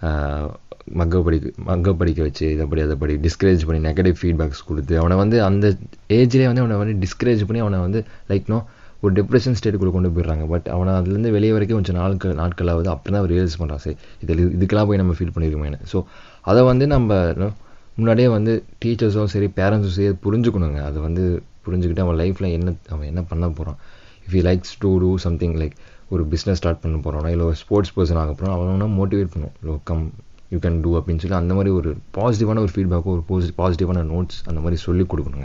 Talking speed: 185 wpm